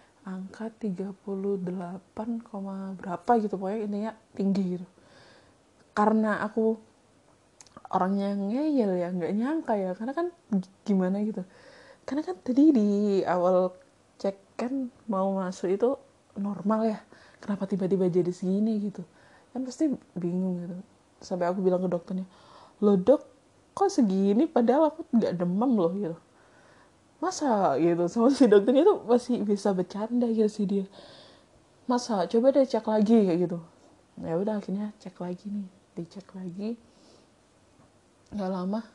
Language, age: Indonesian, 20-39